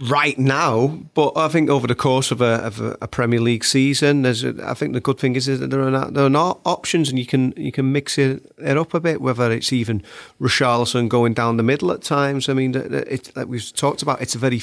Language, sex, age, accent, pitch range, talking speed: English, male, 40-59, British, 115-135 Hz, 260 wpm